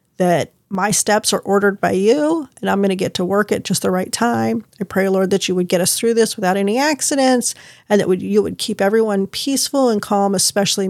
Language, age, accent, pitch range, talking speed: English, 40-59, American, 180-220 Hz, 225 wpm